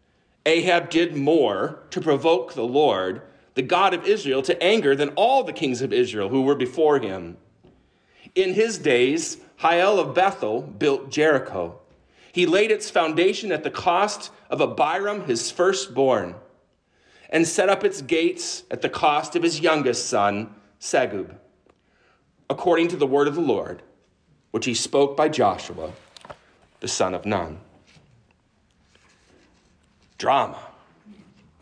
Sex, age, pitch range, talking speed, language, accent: male, 40-59, 130-185 Hz, 135 wpm, English, American